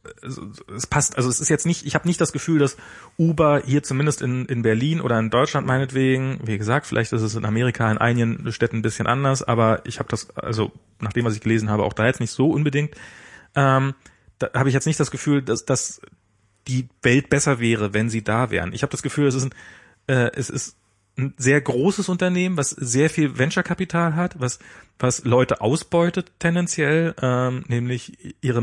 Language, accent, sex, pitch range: German, German, male, 115-145 Hz